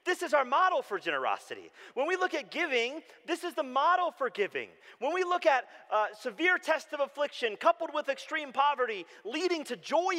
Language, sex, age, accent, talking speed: English, male, 40-59, American, 195 wpm